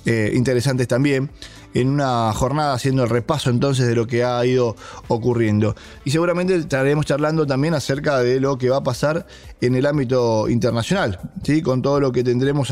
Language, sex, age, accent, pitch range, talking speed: English, male, 20-39, Argentinian, 115-145 Hz, 180 wpm